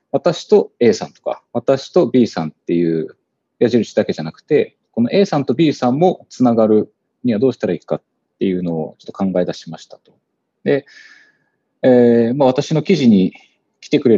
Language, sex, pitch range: Japanese, male, 100-135 Hz